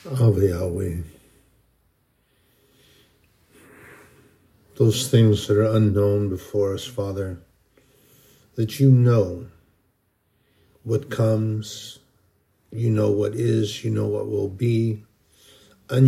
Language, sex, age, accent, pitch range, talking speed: English, male, 60-79, American, 105-130 Hz, 85 wpm